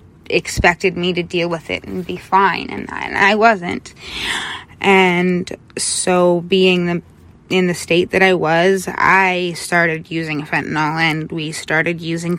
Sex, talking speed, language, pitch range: female, 145 wpm, English, 155-185 Hz